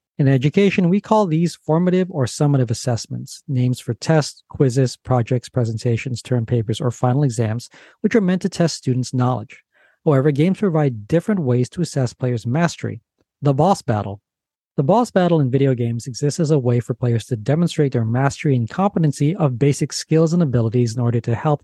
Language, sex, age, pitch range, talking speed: English, male, 40-59, 120-160 Hz, 185 wpm